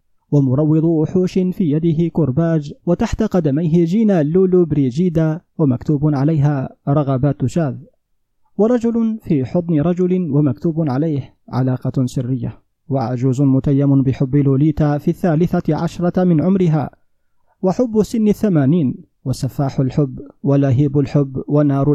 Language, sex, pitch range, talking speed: Arabic, male, 140-180 Hz, 105 wpm